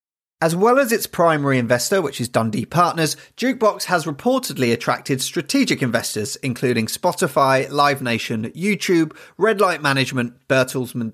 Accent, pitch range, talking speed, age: British, 125-175 Hz, 135 wpm, 30-49